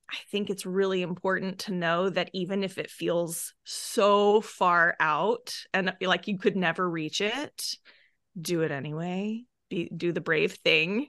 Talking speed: 155 wpm